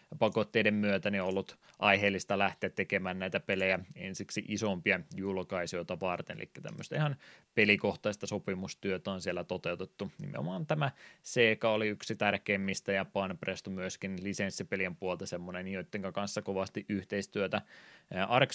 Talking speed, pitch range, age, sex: 125 wpm, 95-105 Hz, 20-39, male